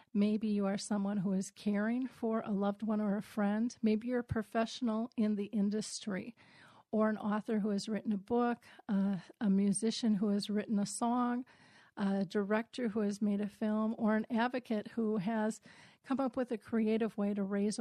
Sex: female